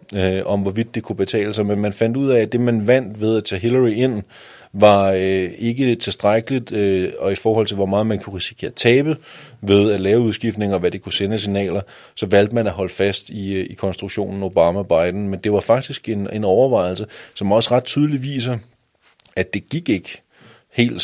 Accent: native